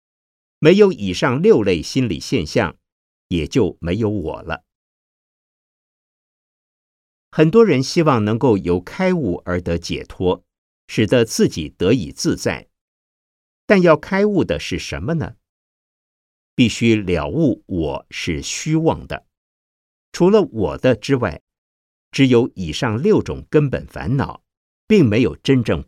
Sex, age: male, 50-69